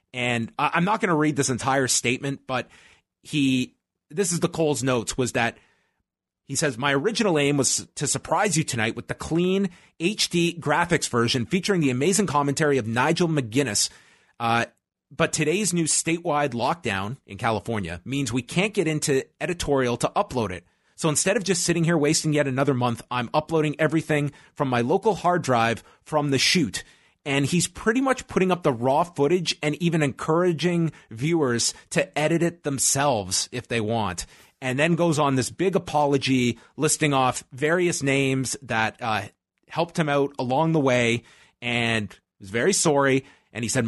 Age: 30-49